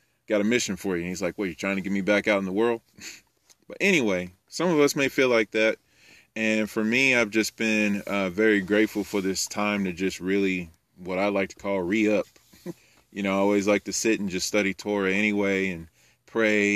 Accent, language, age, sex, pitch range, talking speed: American, English, 20-39, male, 95-110 Hz, 230 wpm